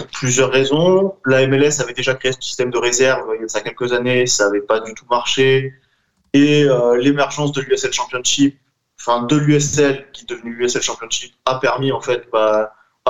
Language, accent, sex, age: French, French, male, 20-39